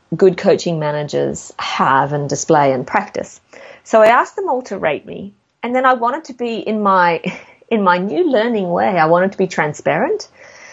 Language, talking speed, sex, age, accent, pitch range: English, 190 wpm, female, 30-49, Australian, 160-205 Hz